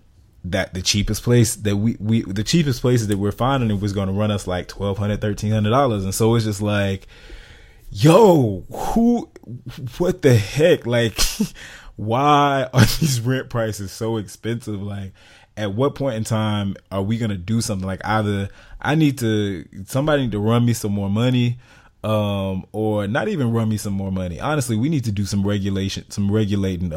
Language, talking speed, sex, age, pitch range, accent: English, 185 wpm, male, 20-39, 95-115 Hz, American